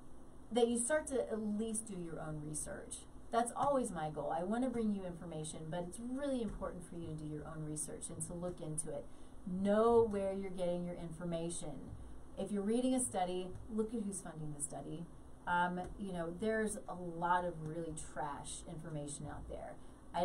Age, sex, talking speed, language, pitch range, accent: 30-49, female, 195 wpm, English, 165-215 Hz, American